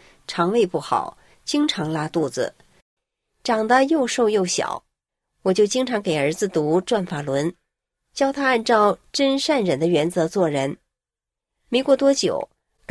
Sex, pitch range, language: female, 185-270 Hz, Chinese